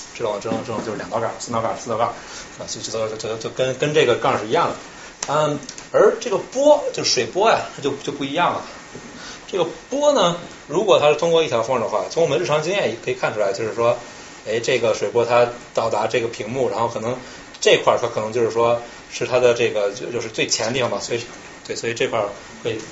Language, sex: Chinese, male